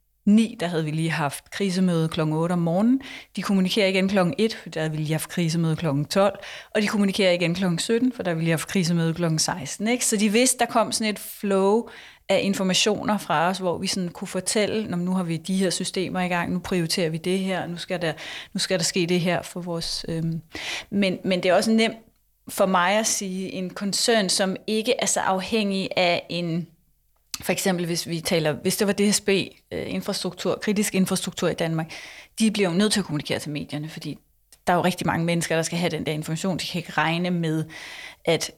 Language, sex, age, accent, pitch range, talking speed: Danish, female, 30-49, native, 165-200 Hz, 220 wpm